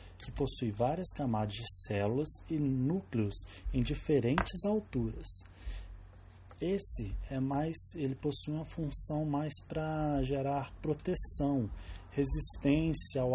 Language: English